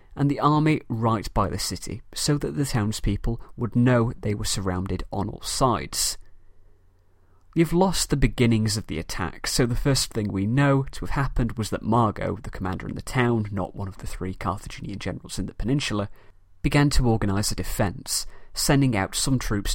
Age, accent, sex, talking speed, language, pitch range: 30-49, British, male, 190 wpm, English, 90-130 Hz